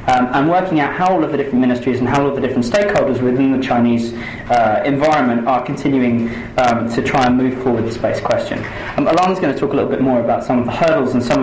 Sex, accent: male, British